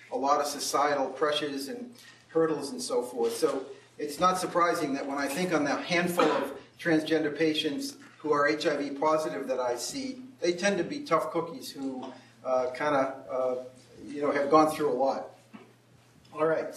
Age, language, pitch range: 40-59, English, 145-175 Hz